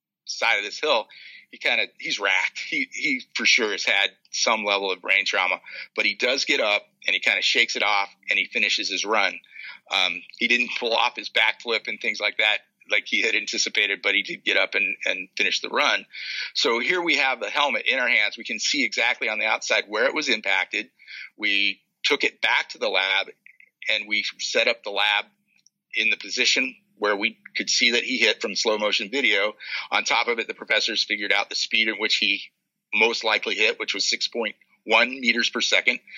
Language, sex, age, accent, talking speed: English, male, 50-69, American, 215 wpm